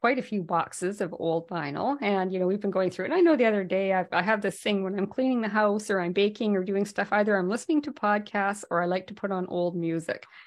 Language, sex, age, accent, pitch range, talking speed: English, female, 40-59, American, 185-250 Hz, 285 wpm